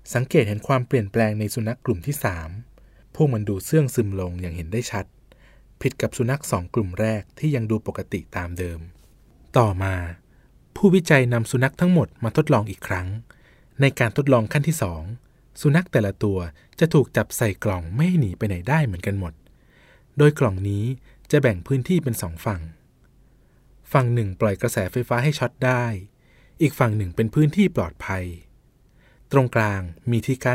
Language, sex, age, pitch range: Thai, male, 20-39, 100-135 Hz